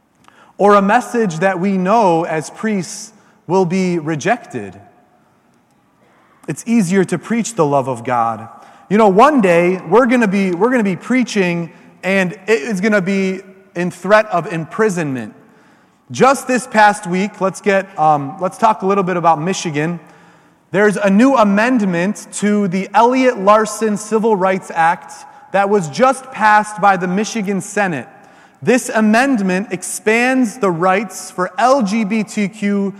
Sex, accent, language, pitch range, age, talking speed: male, American, English, 185-230 Hz, 30-49, 140 wpm